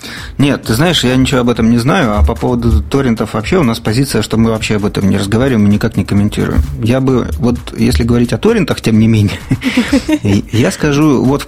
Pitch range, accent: 110-125 Hz, native